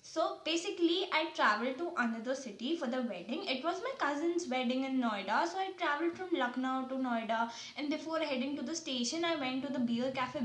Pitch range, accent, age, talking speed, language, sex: 245-325 Hz, Indian, 20-39, 205 wpm, English, female